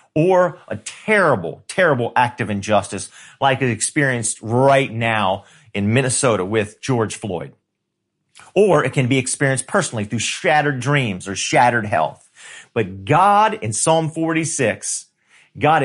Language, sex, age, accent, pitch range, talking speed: English, male, 40-59, American, 115-150 Hz, 135 wpm